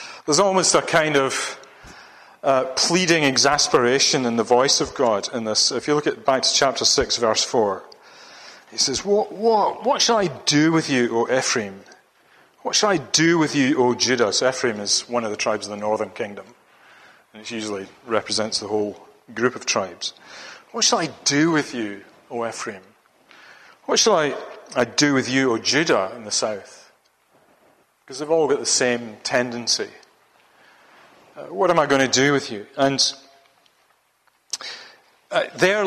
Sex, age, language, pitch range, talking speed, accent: male, 40-59, English, 120-170 Hz, 175 wpm, British